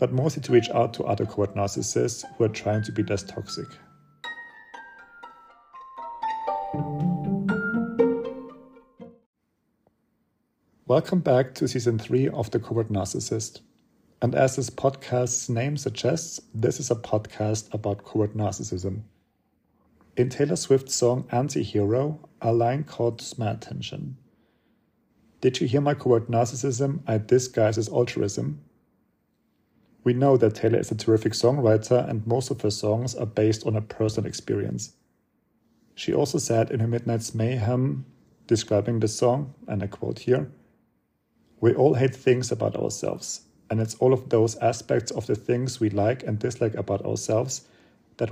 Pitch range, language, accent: 110-135 Hz, English, German